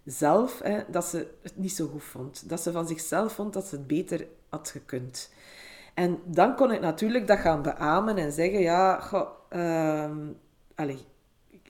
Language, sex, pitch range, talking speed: Dutch, female, 155-205 Hz, 180 wpm